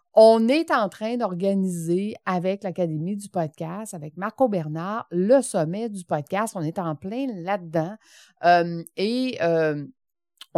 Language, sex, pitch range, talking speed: French, female, 170-240 Hz, 130 wpm